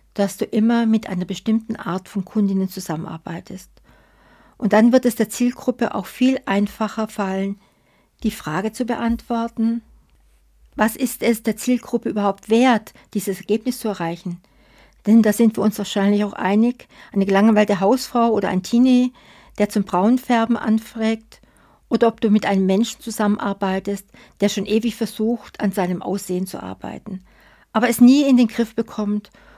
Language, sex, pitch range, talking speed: German, female, 200-235 Hz, 155 wpm